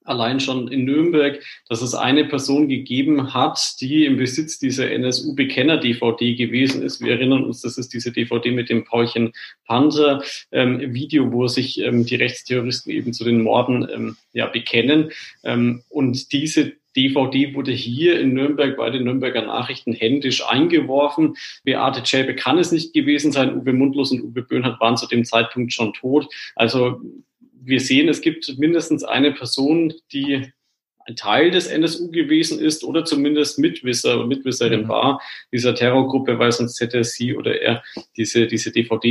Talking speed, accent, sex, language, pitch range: 160 wpm, German, male, German, 120-140 Hz